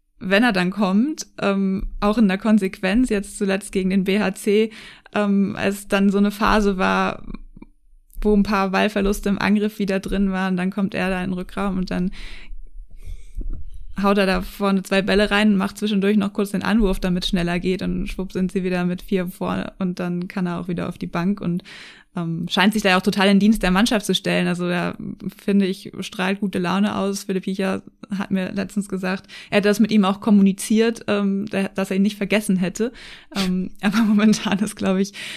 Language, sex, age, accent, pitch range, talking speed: German, female, 20-39, German, 185-205 Hz, 210 wpm